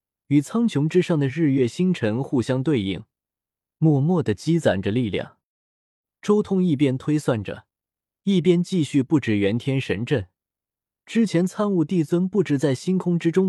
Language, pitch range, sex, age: Chinese, 110-175 Hz, male, 20-39